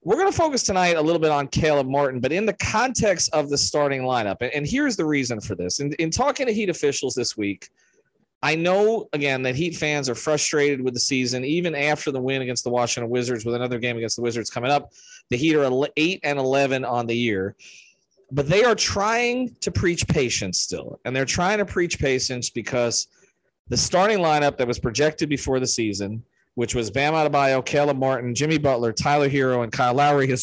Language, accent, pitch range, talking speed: English, American, 125-155 Hz, 215 wpm